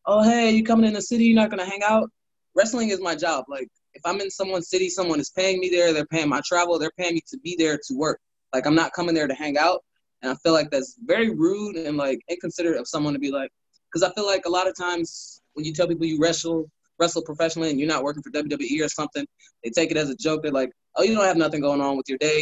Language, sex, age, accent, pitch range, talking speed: English, male, 20-39, American, 150-195 Hz, 285 wpm